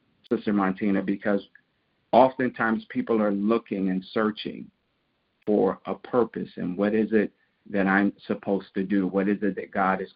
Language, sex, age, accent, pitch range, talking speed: English, male, 50-69, American, 95-110 Hz, 160 wpm